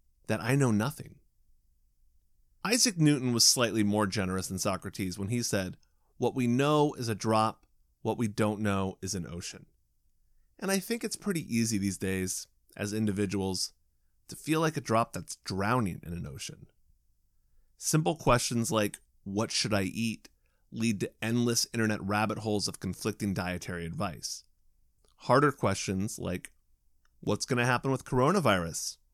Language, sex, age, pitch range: English, male, 30-49, 100-140 Hz